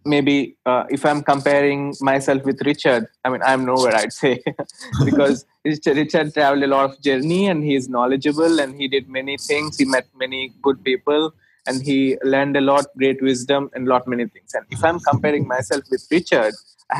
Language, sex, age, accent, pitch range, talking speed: English, male, 20-39, Indian, 135-155 Hz, 195 wpm